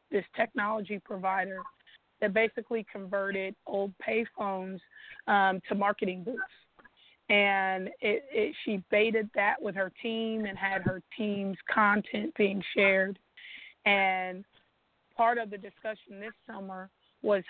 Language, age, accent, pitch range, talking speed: English, 30-49, American, 195-220 Hz, 120 wpm